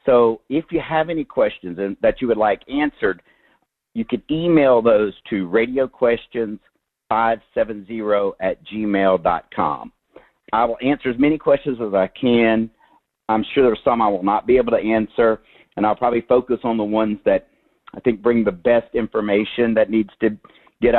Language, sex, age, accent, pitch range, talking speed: English, male, 50-69, American, 105-125 Hz, 165 wpm